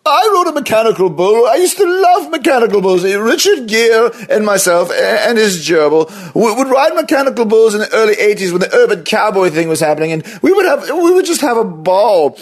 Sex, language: male, English